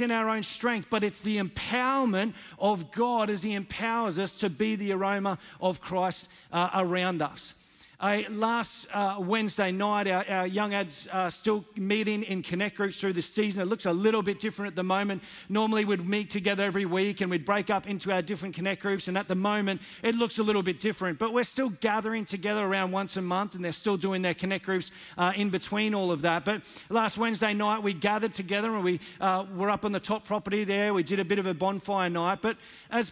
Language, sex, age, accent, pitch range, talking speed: English, male, 40-59, Australian, 190-220 Hz, 225 wpm